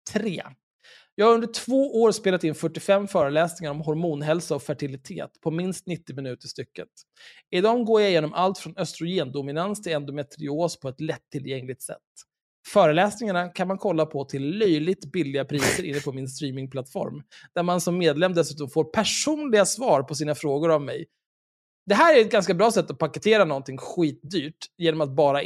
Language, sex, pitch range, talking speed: Swedish, male, 145-195 Hz, 170 wpm